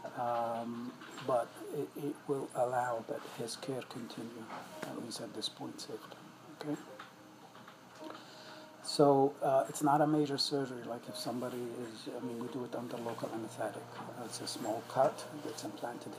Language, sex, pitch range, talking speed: English, male, 115-135 Hz, 165 wpm